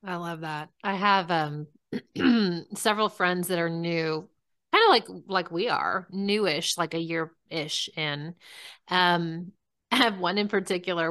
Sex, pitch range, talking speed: female, 165-200 Hz, 150 wpm